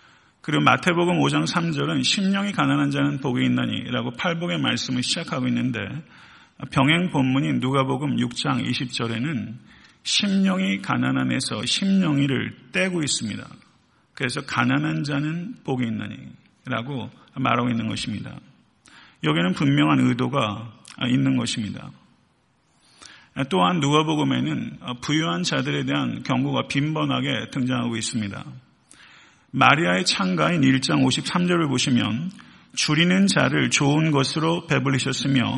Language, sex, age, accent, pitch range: Korean, male, 40-59, native, 125-160 Hz